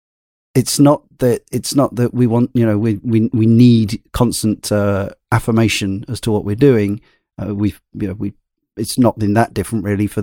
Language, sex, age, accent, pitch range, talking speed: English, male, 40-59, British, 100-120 Hz, 200 wpm